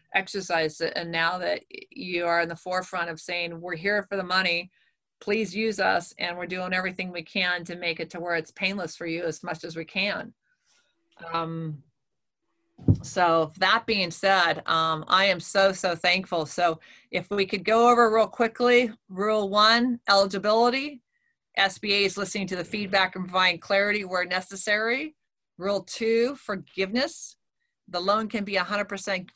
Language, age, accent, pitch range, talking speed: English, 40-59, American, 180-205 Hz, 165 wpm